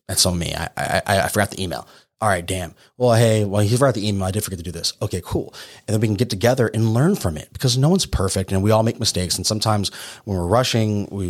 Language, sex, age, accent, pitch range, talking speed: English, male, 30-49, American, 90-115 Hz, 280 wpm